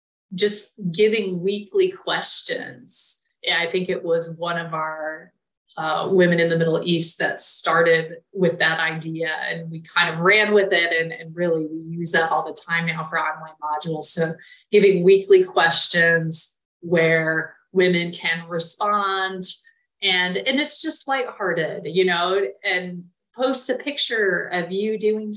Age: 30-49